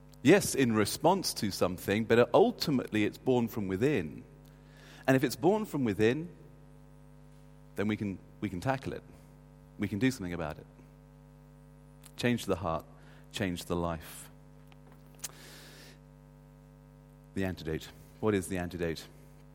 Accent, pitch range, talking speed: British, 105-140 Hz, 130 wpm